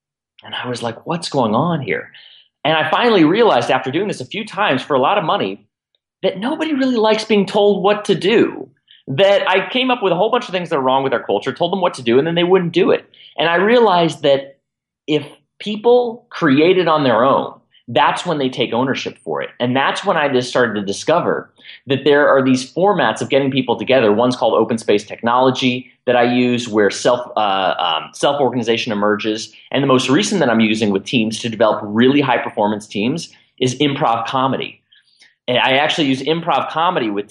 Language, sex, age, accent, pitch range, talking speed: English, male, 30-49, American, 120-170 Hz, 210 wpm